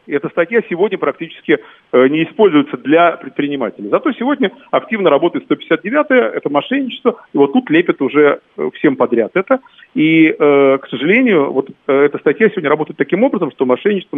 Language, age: Russian, 40-59